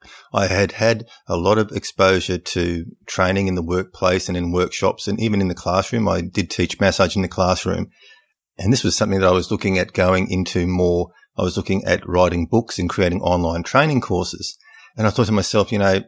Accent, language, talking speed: Australian, English, 215 wpm